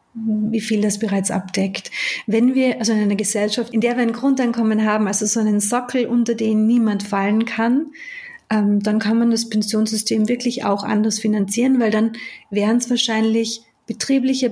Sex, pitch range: female, 210-235 Hz